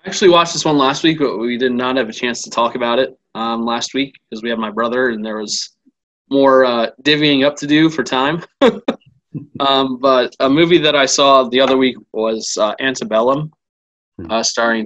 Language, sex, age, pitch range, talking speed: English, male, 20-39, 115-135 Hz, 210 wpm